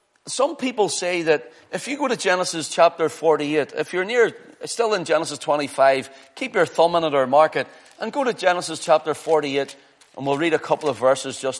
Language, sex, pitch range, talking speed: English, male, 140-180 Hz, 205 wpm